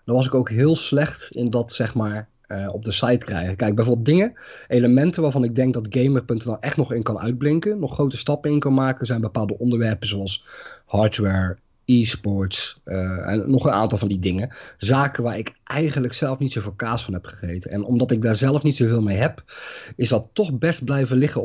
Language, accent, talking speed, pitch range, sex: Dutch, Dutch, 210 wpm, 100-130 Hz, male